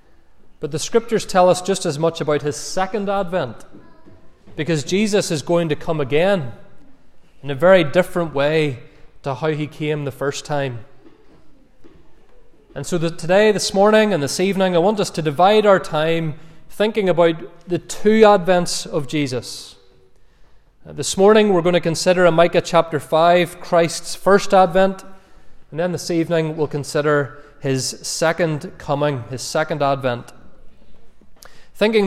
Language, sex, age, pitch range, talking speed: English, male, 30-49, 145-180 Hz, 150 wpm